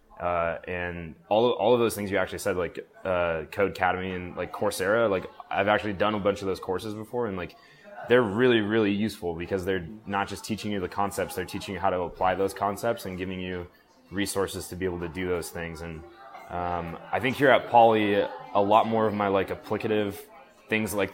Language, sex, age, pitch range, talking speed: English, male, 20-39, 90-105 Hz, 215 wpm